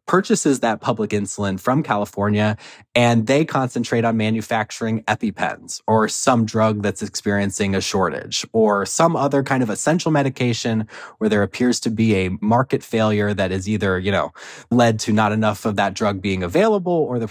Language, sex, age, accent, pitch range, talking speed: English, male, 20-39, American, 105-140 Hz, 175 wpm